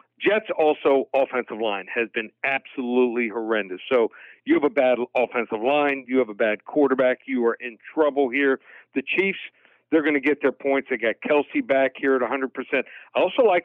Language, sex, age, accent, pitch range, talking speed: English, male, 50-69, American, 125-155 Hz, 190 wpm